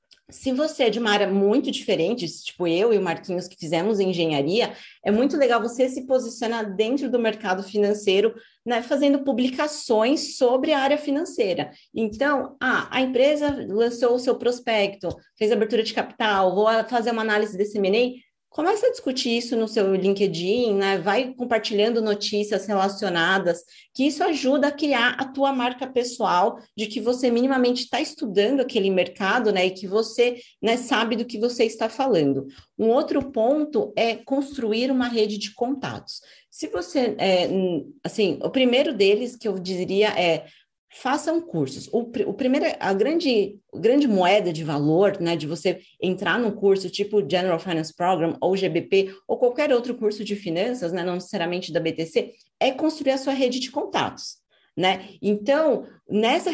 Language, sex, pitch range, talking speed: Portuguese, female, 195-255 Hz, 165 wpm